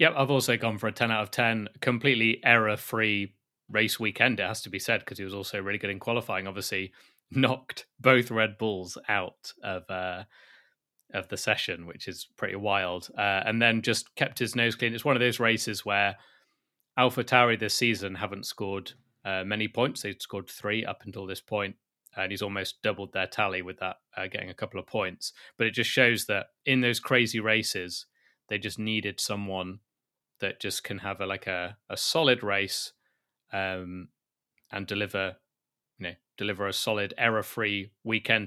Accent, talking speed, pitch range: British, 185 wpm, 95-115 Hz